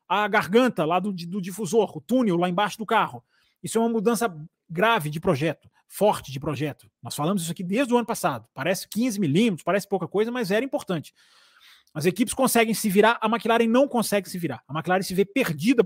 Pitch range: 155-235 Hz